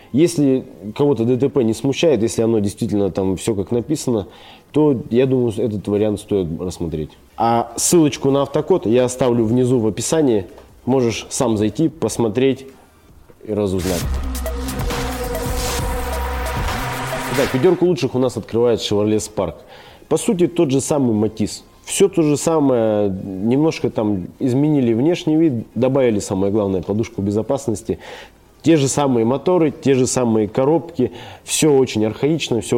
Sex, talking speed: male, 135 wpm